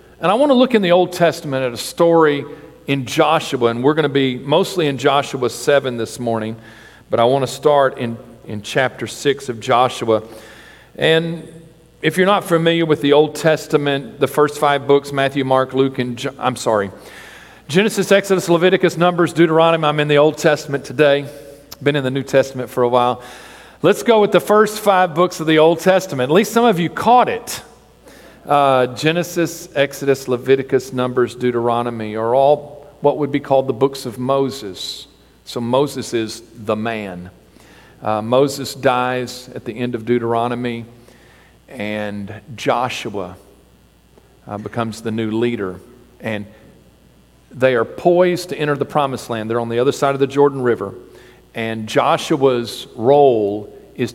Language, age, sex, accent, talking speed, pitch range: English, 40-59, male, American, 165 wpm, 120-155 Hz